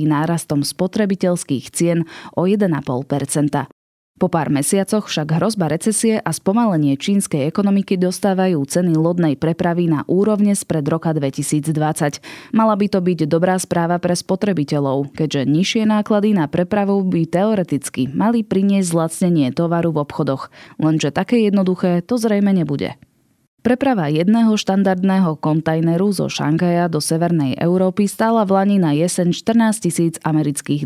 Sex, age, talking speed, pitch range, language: female, 20-39, 130 wpm, 155-200 Hz, Slovak